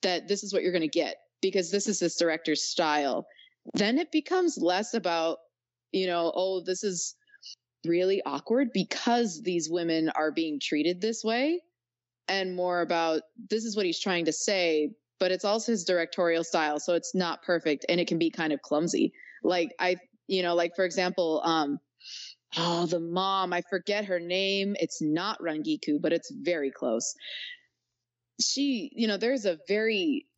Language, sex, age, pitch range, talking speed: English, female, 20-39, 160-210 Hz, 175 wpm